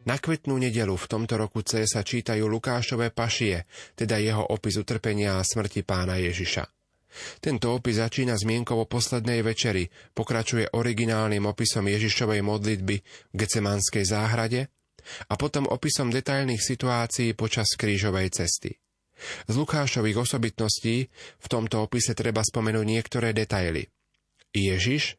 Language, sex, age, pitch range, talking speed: Slovak, male, 30-49, 105-120 Hz, 125 wpm